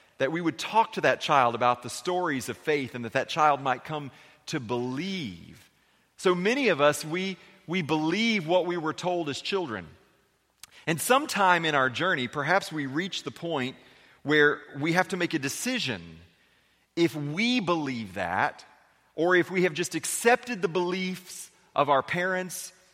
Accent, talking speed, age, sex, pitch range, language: American, 170 wpm, 40-59, male, 145-185 Hz, English